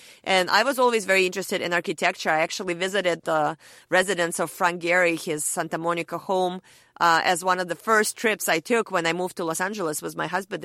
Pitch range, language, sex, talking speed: 165-200 Hz, English, female, 215 wpm